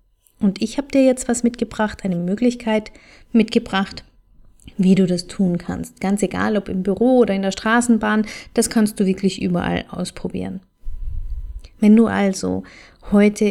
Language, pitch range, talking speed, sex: German, 190-230 Hz, 150 wpm, female